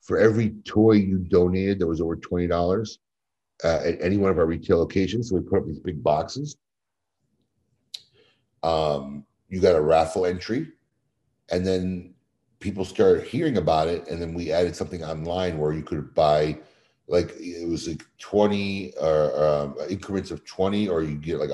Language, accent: English, American